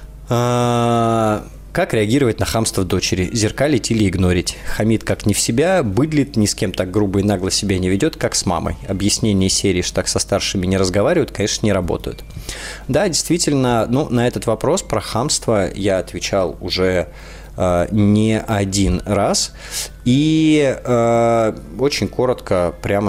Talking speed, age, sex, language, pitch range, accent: 150 wpm, 20-39, male, Russian, 100-115 Hz, native